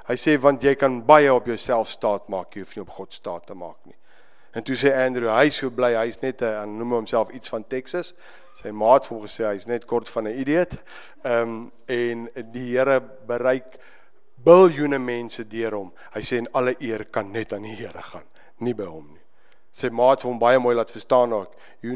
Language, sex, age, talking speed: English, male, 50-69, 220 wpm